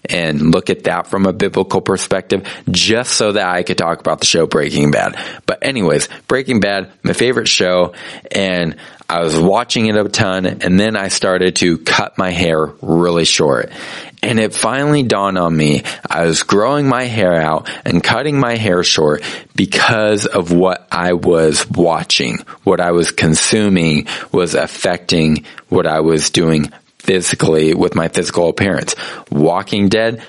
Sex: male